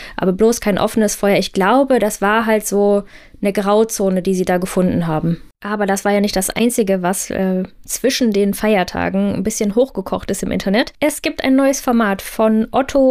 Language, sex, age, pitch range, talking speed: German, female, 20-39, 205-255 Hz, 195 wpm